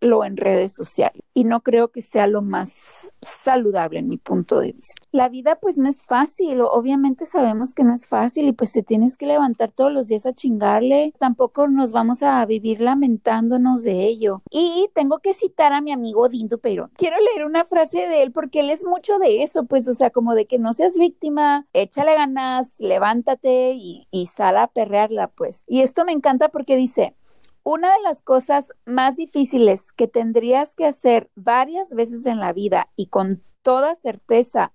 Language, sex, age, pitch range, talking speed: Spanish, female, 40-59, 235-295 Hz, 195 wpm